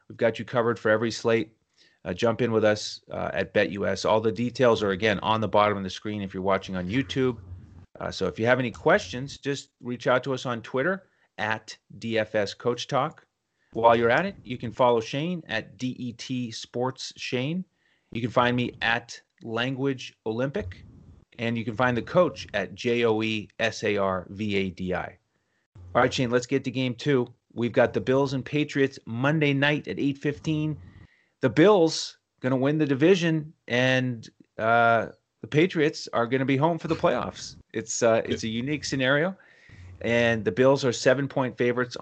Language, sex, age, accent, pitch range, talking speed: English, male, 30-49, American, 110-135 Hz, 175 wpm